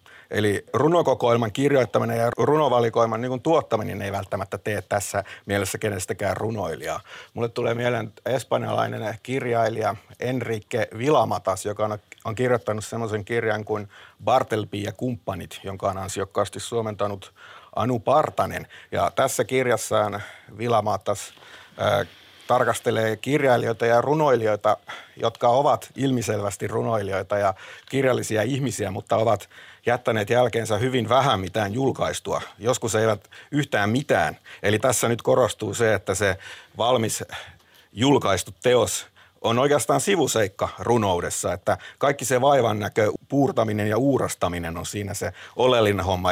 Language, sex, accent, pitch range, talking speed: Finnish, male, native, 100-120 Hz, 120 wpm